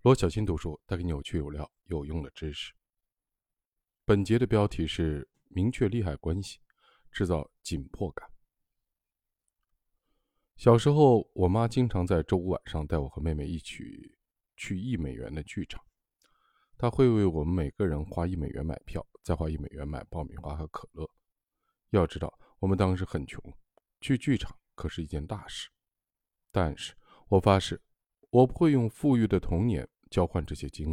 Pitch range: 80-105 Hz